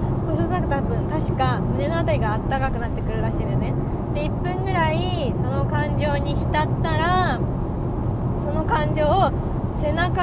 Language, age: Japanese, 20-39